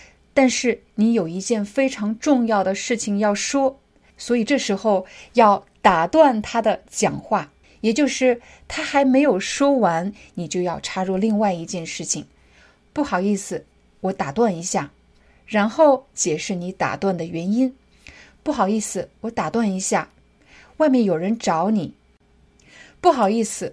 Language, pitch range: Chinese, 190-240 Hz